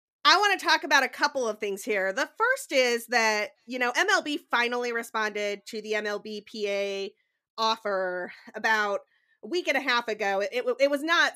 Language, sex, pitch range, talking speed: English, female, 215-275 Hz, 185 wpm